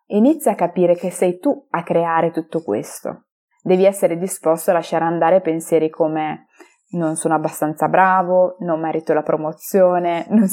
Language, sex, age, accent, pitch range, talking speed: Italian, female, 20-39, native, 165-215 Hz, 155 wpm